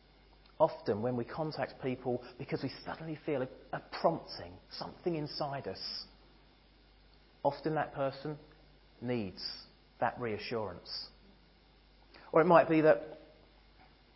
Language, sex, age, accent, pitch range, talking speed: English, male, 40-59, British, 110-135 Hz, 95 wpm